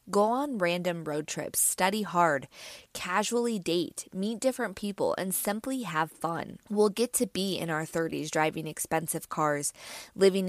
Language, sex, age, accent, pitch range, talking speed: English, female, 20-39, American, 160-200 Hz, 155 wpm